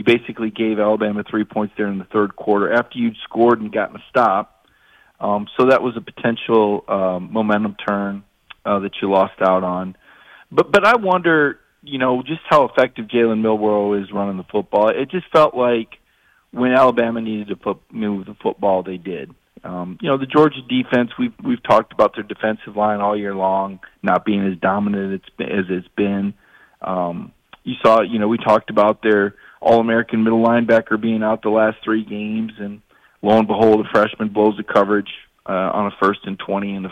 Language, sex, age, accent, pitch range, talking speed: English, male, 40-59, American, 100-125 Hz, 195 wpm